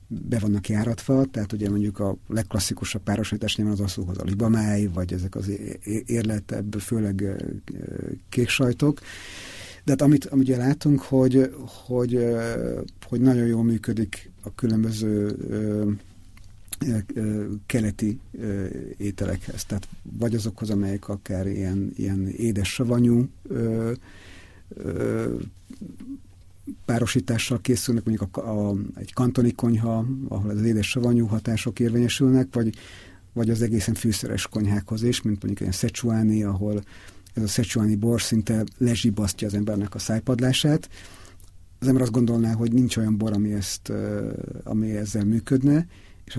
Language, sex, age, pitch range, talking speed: Hungarian, male, 50-69, 100-120 Hz, 125 wpm